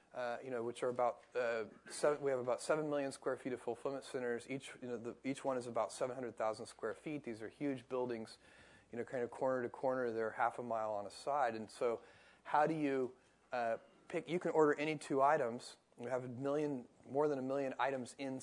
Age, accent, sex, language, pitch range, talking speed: 30-49, American, male, English, 115-145 Hz, 235 wpm